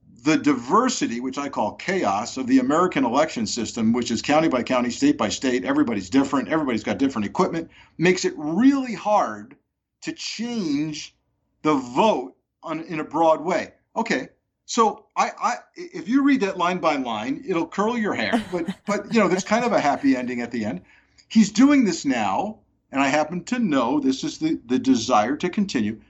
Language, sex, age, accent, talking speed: English, male, 50-69, American, 180 wpm